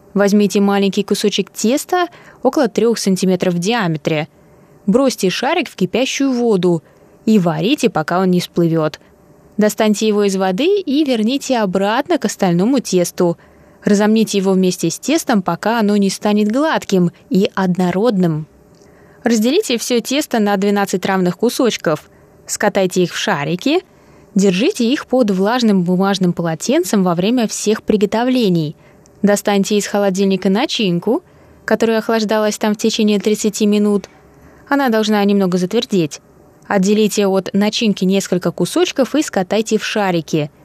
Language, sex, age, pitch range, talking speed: Russian, female, 20-39, 185-230 Hz, 130 wpm